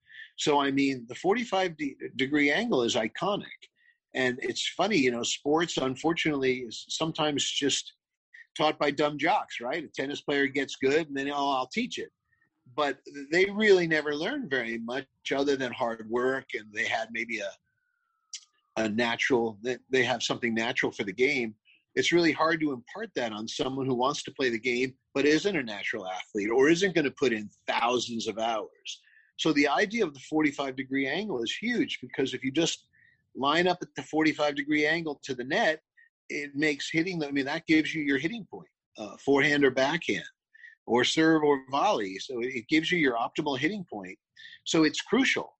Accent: American